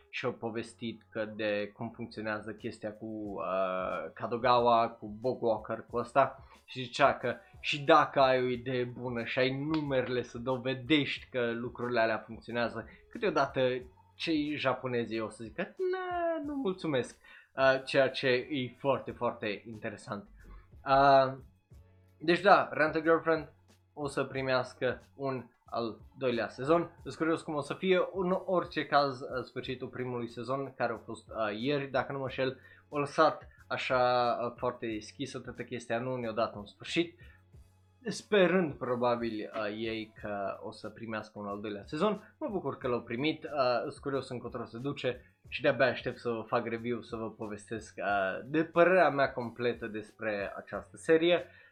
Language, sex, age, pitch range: Romanian, male, 20-39, 115-140 Hz